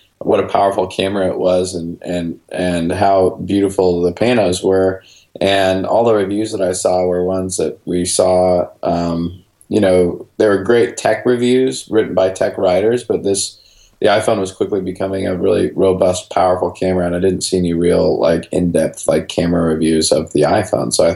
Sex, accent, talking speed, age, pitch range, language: male, American, 185 wpm, 20-39, 90-95 Hz, English